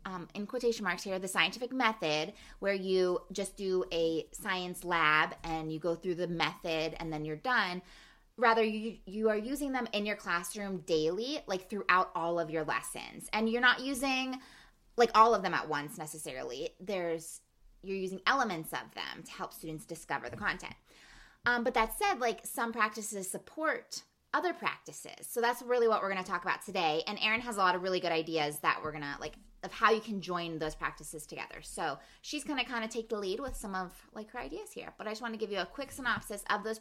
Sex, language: female, English